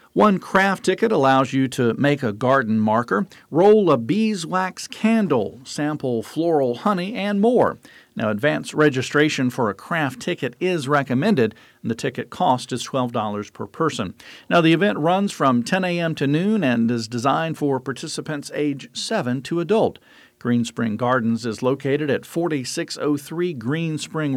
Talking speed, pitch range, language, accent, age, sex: 150 wpm, 130-175 Hz, English, American, 50-69, male